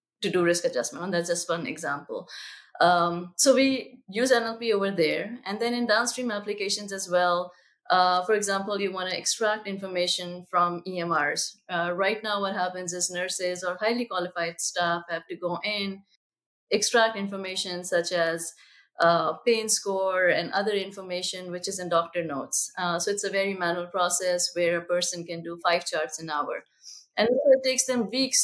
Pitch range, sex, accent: 175-215 Hz, female, Indian